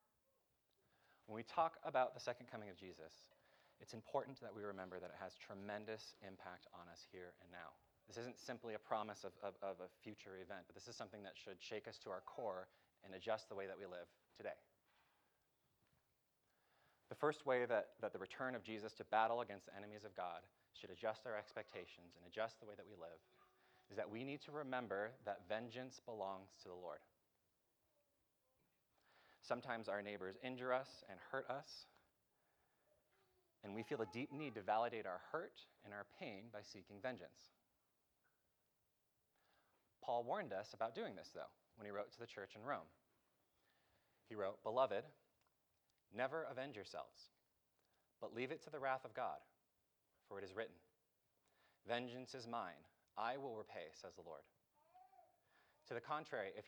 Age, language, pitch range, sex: 30-49, English, 95-125 Hz, male